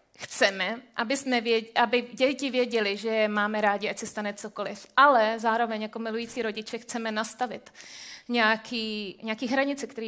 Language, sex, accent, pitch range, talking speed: Czech, female, native, 210-245 Hz, 135 wpm